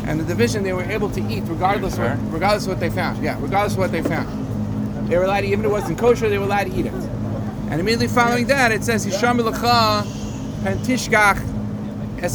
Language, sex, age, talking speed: English, male, 40-59, 225 wpm